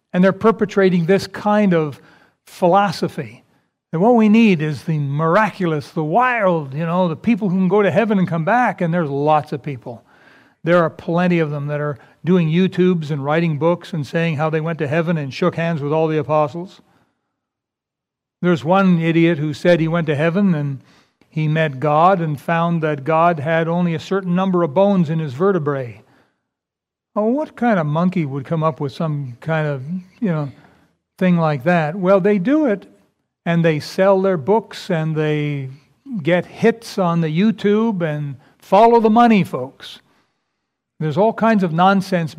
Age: 60-79